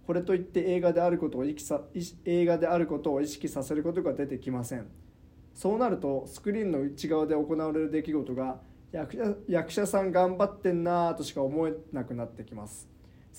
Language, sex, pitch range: Japanese, male, 130-175 Hz